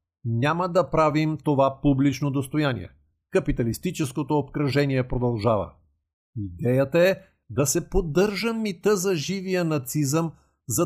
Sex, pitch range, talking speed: male, 130-175 Hz, 105 wpm